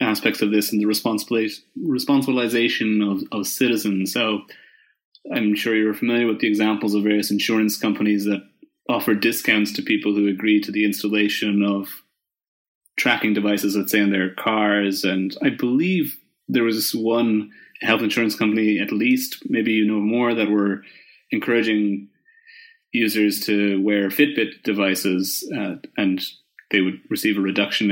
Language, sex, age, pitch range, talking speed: English, male, 30-49, 105-130 Hz, 150 wpm